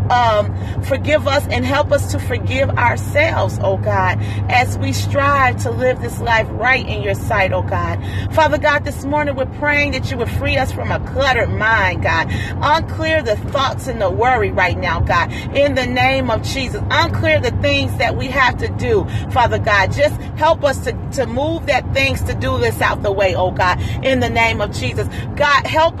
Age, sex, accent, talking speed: 40-59, female, American, 200 wpm